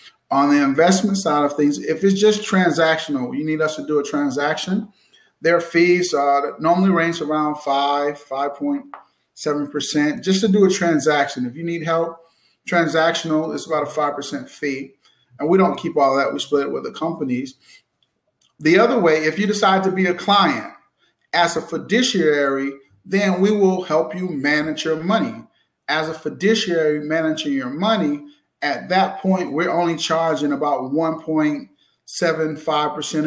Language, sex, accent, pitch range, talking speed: English, male, American, 150-185 Hz, 160 wpm